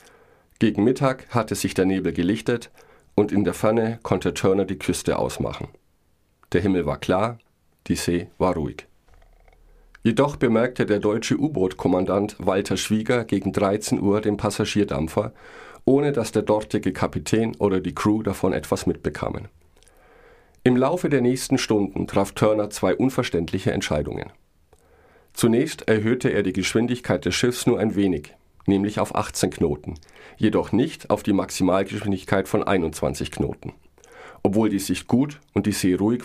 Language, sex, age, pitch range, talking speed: German, male, 40-59, 95-115 Hz, 145 wpm